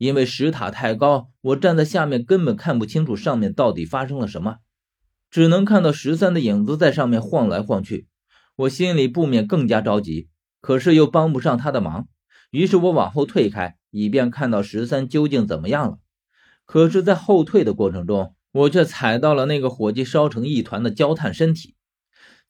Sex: male